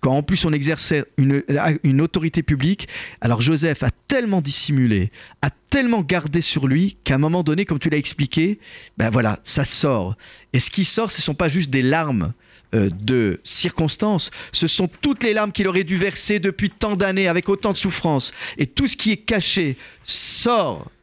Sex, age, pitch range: male, 50-69, 120-165 Hz